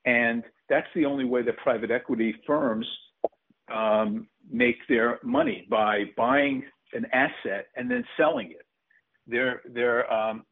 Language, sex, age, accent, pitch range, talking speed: English, male, 50-69, American, 110-135 Hz, 135 wpm